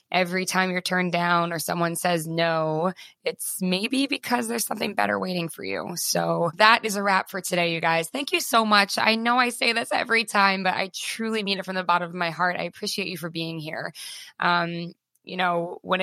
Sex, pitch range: female, 170-215 Hz